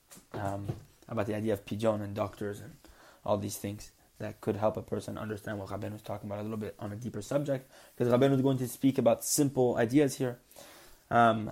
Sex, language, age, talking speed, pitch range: male, English, 20-39, 215 wpm, 105-125 Hz